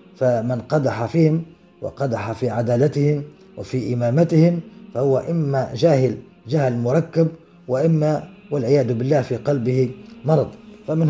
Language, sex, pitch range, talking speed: Arabic, male, 130-170 Hz, 110 wpm